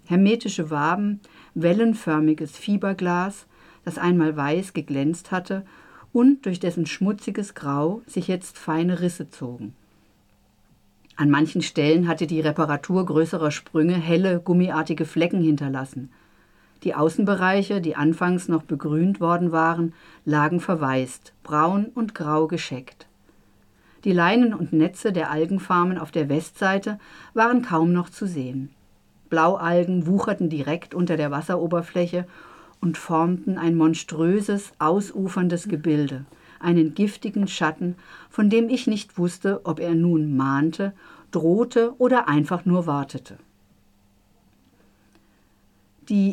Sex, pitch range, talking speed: female, 155-190 Hz, 115 wpm